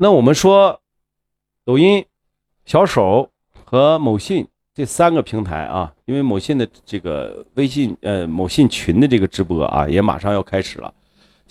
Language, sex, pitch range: Chinese, male, 95-135 Hz